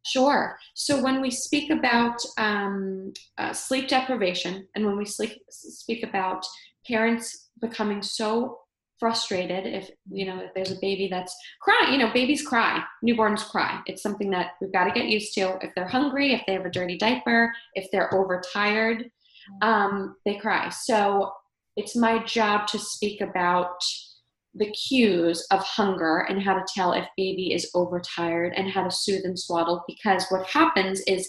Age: 20-39